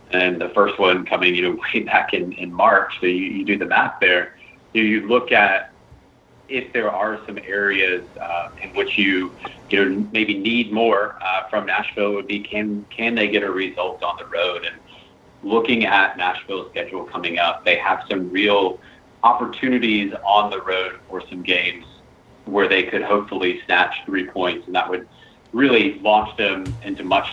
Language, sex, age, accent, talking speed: English, male, 30-49, American, 180 wpm